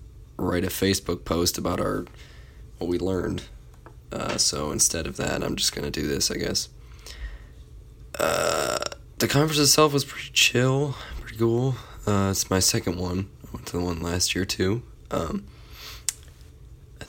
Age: 20-39